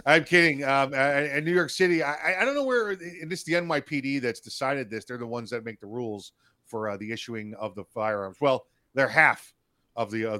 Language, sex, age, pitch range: English, male, 40-59, 115-150 Hz